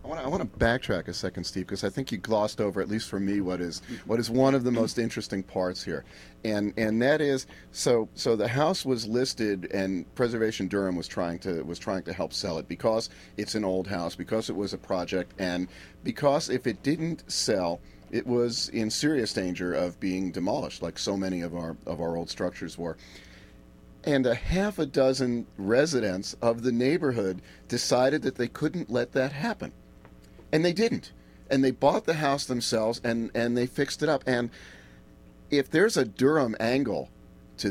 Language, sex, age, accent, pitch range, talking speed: English, male, 40-59, American, 90-125 Hz, 195 wpm